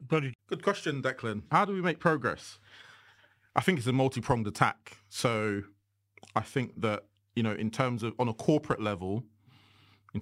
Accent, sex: British, male